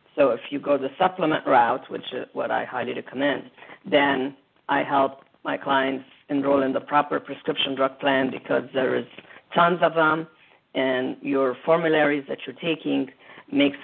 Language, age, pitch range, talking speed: English, 40-59, 130-145 Hz, 165 wpm